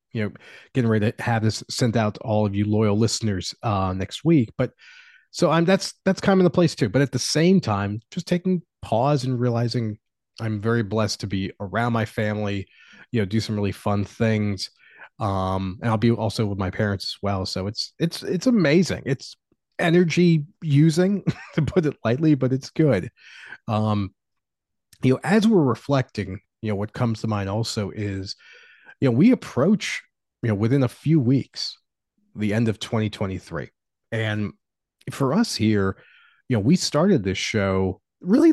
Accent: American